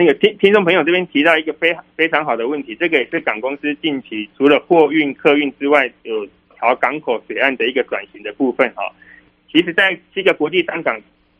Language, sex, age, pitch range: Chinese, male, 20-39, 130-165 Hz